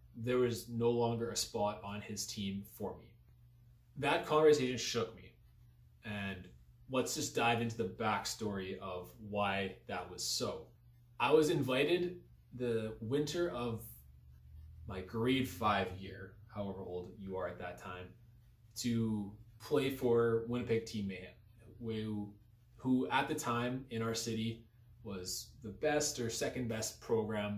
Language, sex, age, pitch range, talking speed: English, male, 20-39, 105-120 Hz, 140 wpm